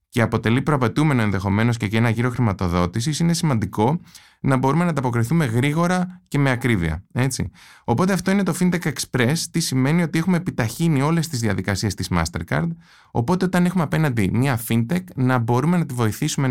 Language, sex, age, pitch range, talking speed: Greek, male, 20-39, 105-155 Hz, 170 wpm